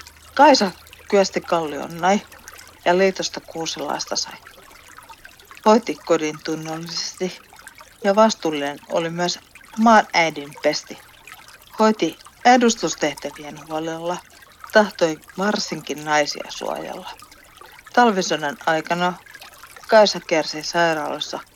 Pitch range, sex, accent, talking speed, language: 150-195 Hz, female, native, 85 wpm, Finnish